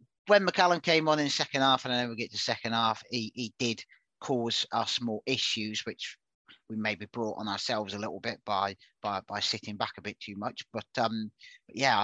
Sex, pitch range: male, 110-130 Hz